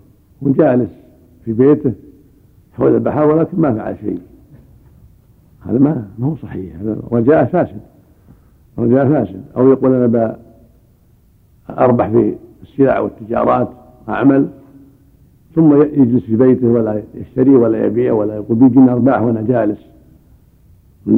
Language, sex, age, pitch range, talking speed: Arabic, male, 70-89, 120-145 Hz, 115 wpm